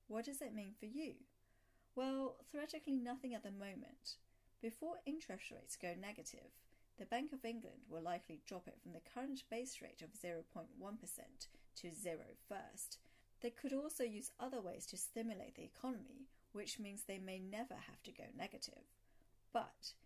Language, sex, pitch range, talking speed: English, female, 185-250 Hz, 165 wpm